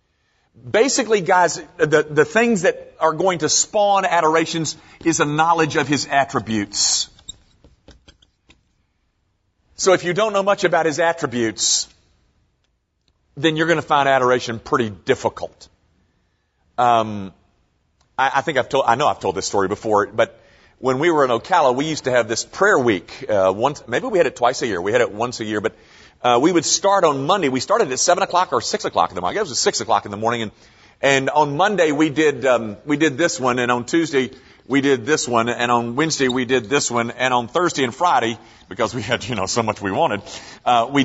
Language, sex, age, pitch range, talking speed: English, male, 40-59, 115-185 Hz, 210 wpm